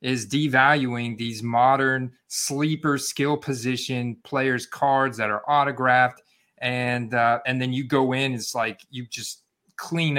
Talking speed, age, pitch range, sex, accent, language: 140 wpm, 30-49, 125-150 Hz, male, American, English